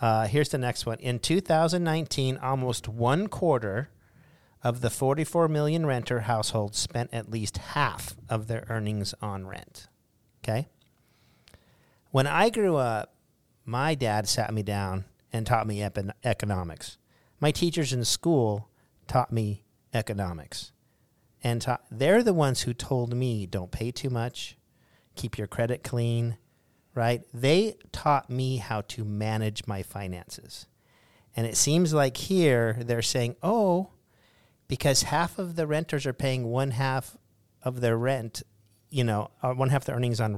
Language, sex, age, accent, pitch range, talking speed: English, male, 50-69, American, 105-130 Hz, 145 wpm